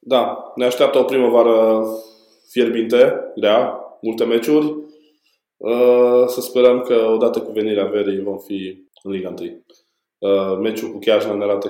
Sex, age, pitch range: male, 20-39, 100-135 Hz